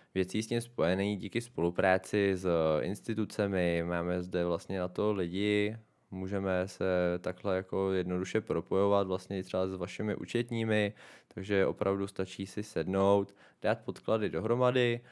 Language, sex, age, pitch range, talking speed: Czech, male, 20-39, 95-120 Hz, 130 wpm